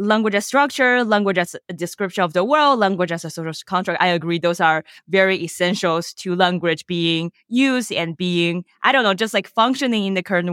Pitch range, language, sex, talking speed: 165-220 Hz, English, female, 215 wpm